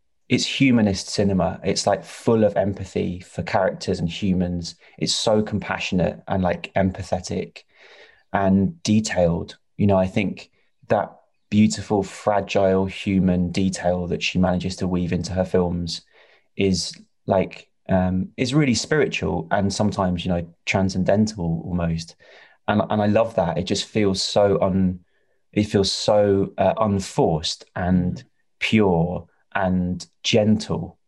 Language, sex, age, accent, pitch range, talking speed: English, male, 20-39, British, 90-100 Hz, 130 wpm